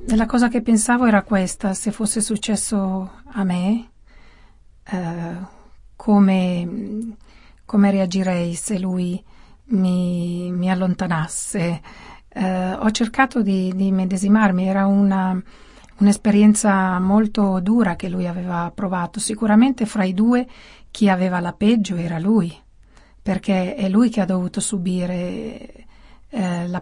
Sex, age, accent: female, 40-59, native